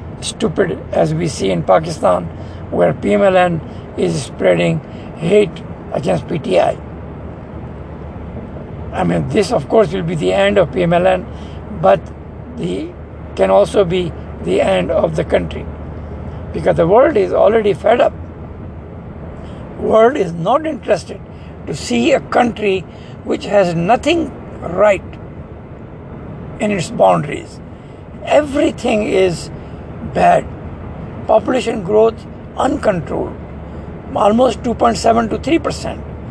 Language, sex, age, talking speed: English, male, 60-79, 110 wpm